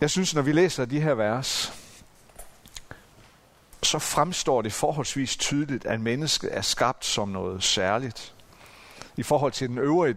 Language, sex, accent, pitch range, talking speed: Danish, male, native, 110-160 Hz, 150 wpm